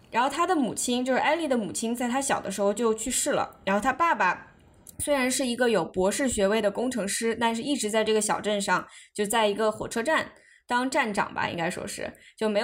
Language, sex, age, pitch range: Chinese, female, 20-39, 195-240 Hz